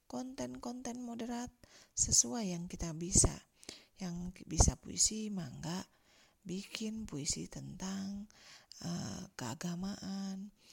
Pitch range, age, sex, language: 175-220 Hz, 40-59, female, Indonesian